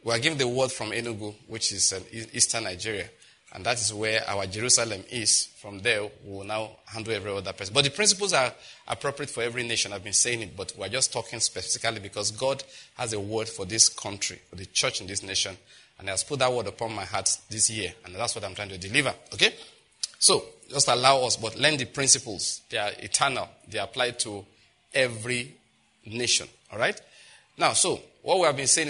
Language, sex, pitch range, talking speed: English, male, 110-135 Hz, 210 wpm